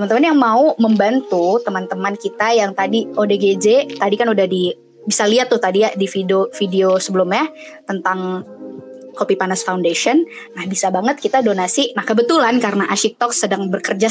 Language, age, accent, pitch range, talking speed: Indonesian, 20-39, native, 195-245 Hz, 160 wpm